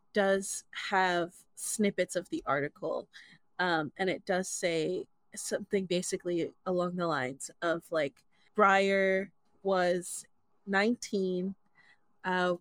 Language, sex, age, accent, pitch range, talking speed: English, female, 20-39, American, 175-205 Hz, 105 wpm